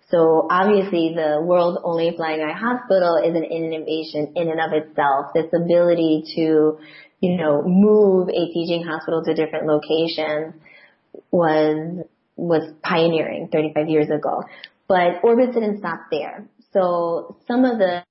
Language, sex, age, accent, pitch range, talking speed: English, female, 30-49, American, 155-185 Hz, 140 wpm